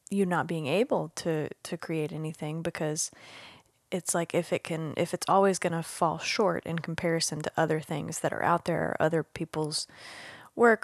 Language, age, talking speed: English, 20-39, 185 wpm